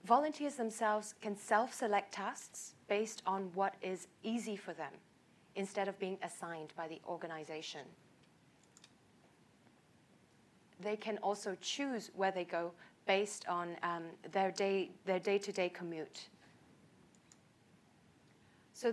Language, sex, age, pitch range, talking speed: English, female, 30-49, 180-210 Hz, 115 wpm